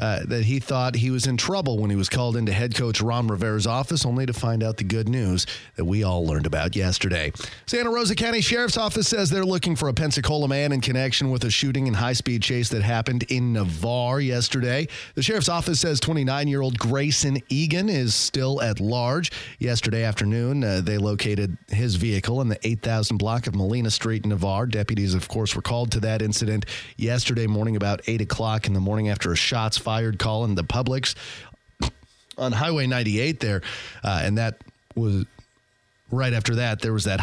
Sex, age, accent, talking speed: male, 30-49, American, 195 wpm